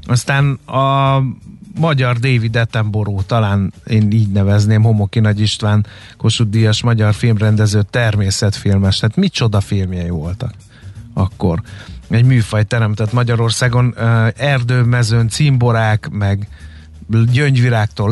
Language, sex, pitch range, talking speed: Hungarian, male, 105-125 Hz, 105 wpm